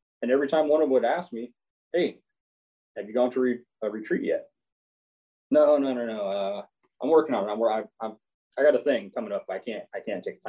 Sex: male